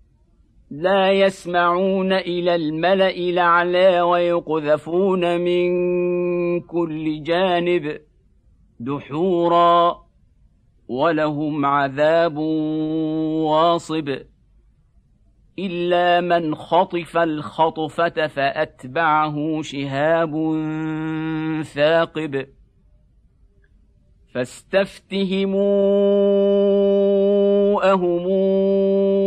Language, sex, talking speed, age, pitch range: Arabic, male, 45 wpm, 50-69, 155-175 Hz